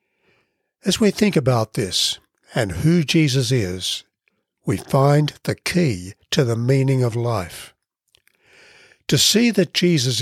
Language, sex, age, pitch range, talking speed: English, male, 60-79, 125-160 Hz, 130 wpm